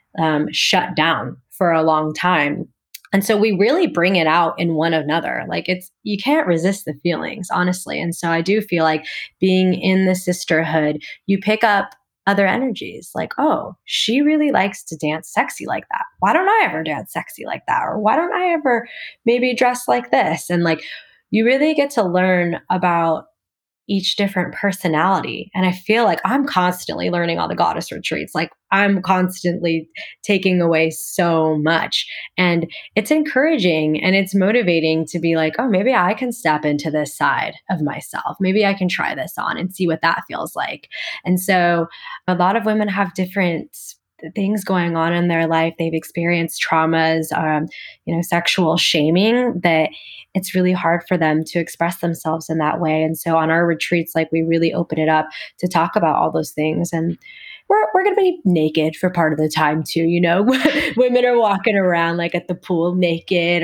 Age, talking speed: 20-39, 190 wpm